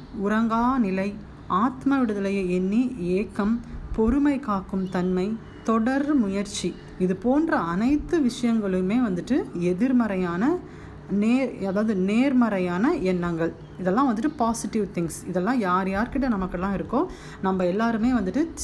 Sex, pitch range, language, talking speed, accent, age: female, 185-255 Hz, Tamil, 105 wpm, native, 30-49